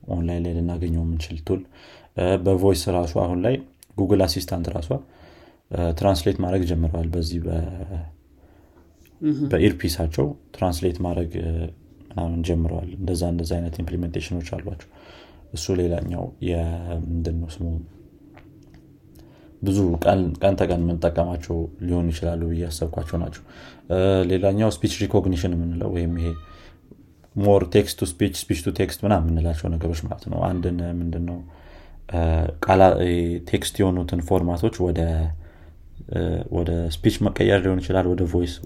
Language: Amharic